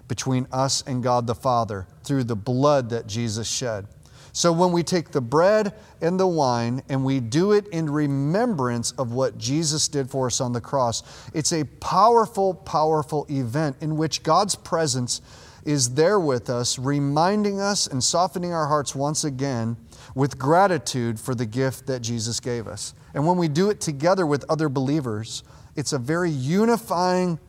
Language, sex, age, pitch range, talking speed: English, male, 30-49, 125-160 Hz, 170 wpm